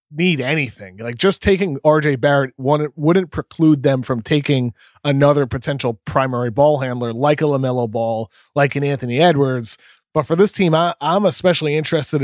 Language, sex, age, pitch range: English, male, 30-49, 120-150 Hz